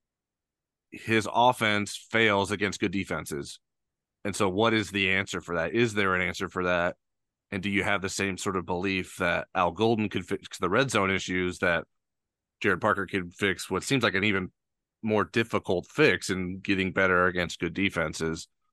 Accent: American